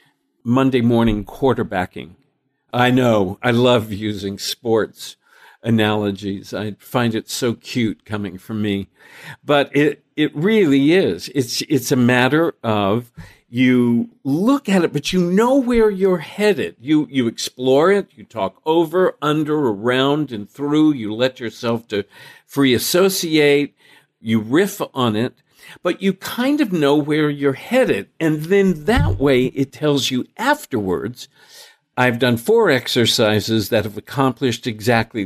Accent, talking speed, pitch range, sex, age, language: American, 140 wpm, 110-155 Hz, male, 50-69, English